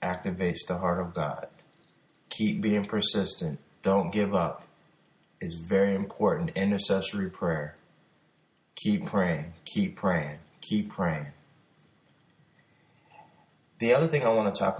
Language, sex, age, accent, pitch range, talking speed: English, male, 20-39, American, 95-140 Hz, 120 wpm